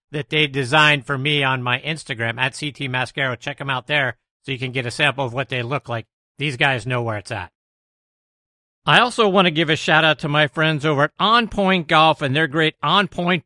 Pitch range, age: 140-205 Hz, 50-69